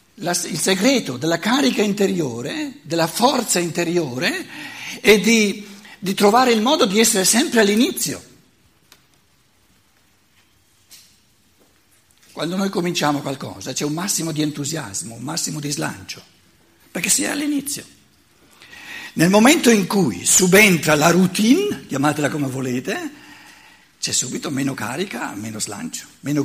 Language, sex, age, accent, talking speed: Italian, male, 60-79, native, 120 wpm